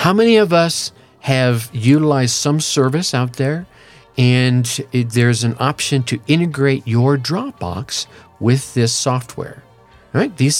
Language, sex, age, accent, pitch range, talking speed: English, male, 50-69, American, 115-145 Hz, 125 wpm